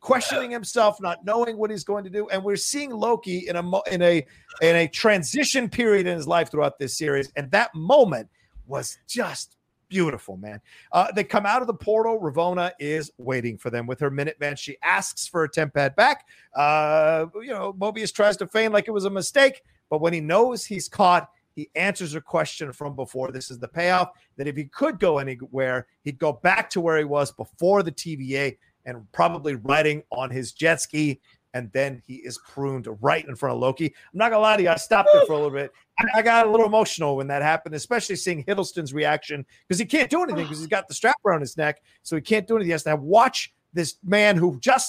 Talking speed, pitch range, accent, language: 225 wpm, 145-205 Hz, American, English